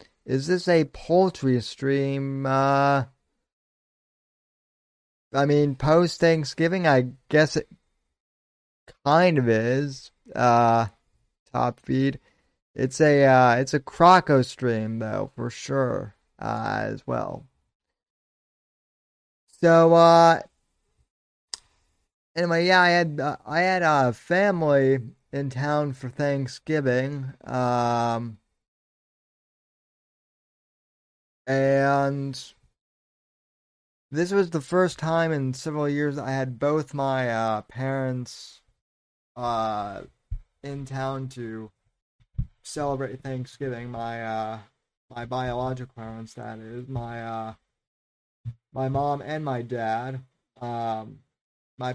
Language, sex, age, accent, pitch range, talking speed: English, male, 30-49, American, 120-145 Hz, 100 wpm